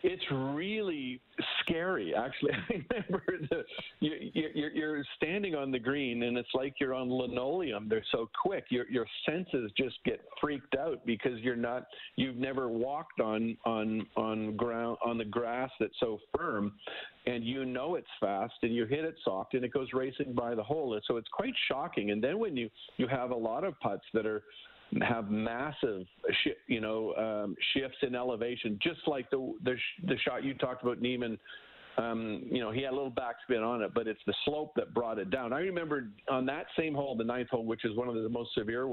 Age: 50-69